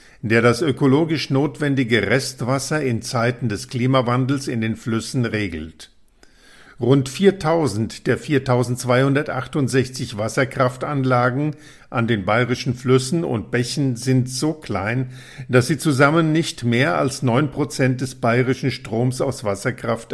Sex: male